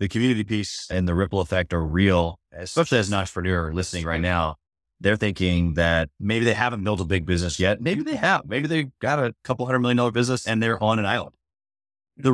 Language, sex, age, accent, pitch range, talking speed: English, male, 30-49, American, 95-145 Hz, 220 wpm